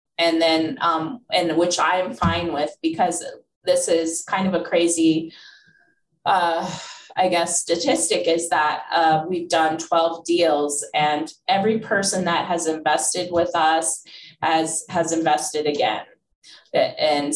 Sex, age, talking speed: female, 20-39, 140 wpm